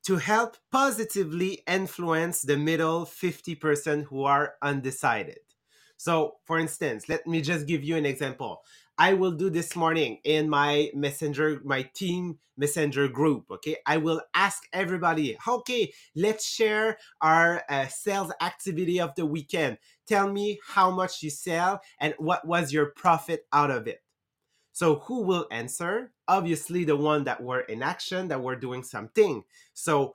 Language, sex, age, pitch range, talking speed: English, male, 30-49, 145-180 Hz, 155 wpm